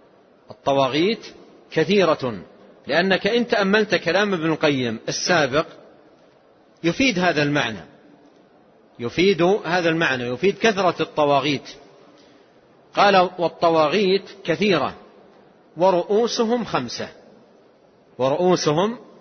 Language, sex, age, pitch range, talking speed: Arabic, male, 40-59, 145-195 Hz, 75 wpm